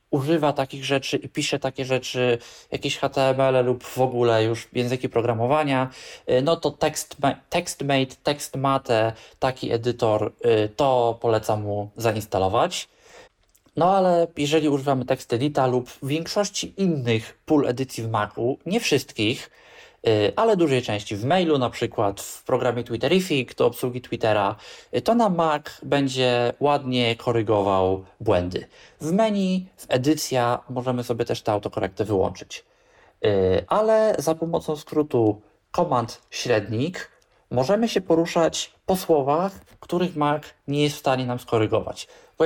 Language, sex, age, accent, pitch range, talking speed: Polish, male, 20-39, native, 120-160 Hz, 130 wpm